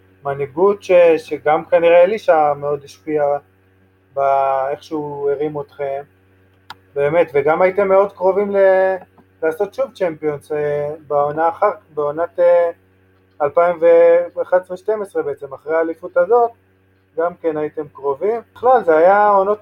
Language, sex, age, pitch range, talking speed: Hebrew, male, 20-39, 145-190 Hz, 100 wpm